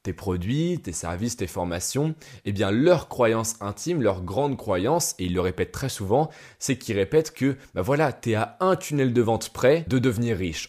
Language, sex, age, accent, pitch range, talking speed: French, male, 20-39, French, 95-130 Hz, 215 wpm